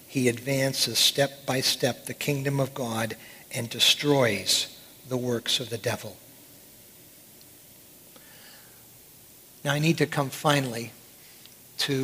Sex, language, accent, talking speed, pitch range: male, English, American, 115 wpm, 125-140 Hz